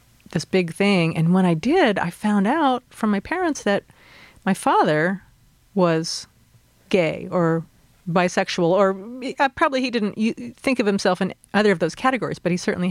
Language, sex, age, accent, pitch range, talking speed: English, female, 40-59, American, 165-220 Hz, 165 wpm